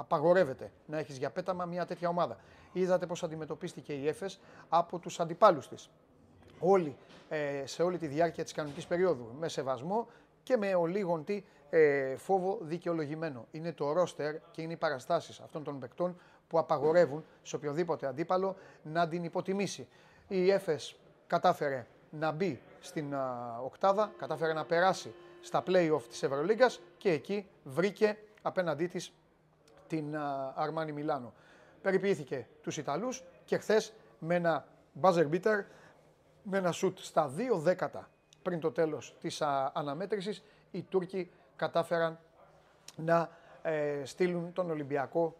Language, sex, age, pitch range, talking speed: Greek, male, 30-49, 150-180 Hz, 130 wpm